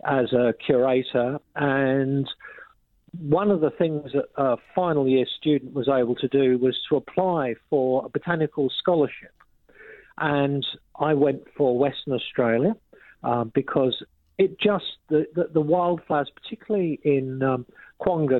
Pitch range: 130-165 Hz